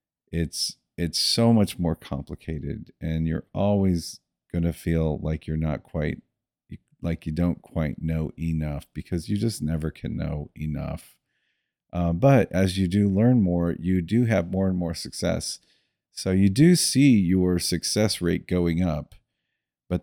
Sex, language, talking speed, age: male, English, 160 wpm, 40-59